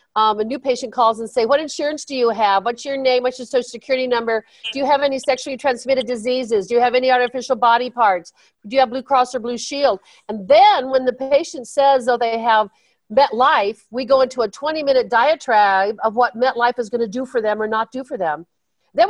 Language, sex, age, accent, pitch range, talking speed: English, female, 50-69, American, 220-275 Hz, 230 wpm